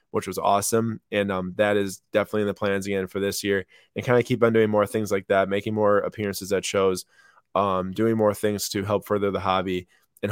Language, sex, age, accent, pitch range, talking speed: English, male, 20-39, American, 100-115 Hz, 235 wpm